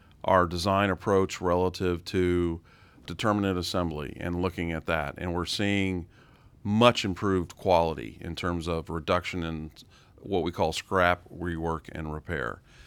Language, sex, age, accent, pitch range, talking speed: English, male, 40-59, American, 85-100 Hz, 135 wpm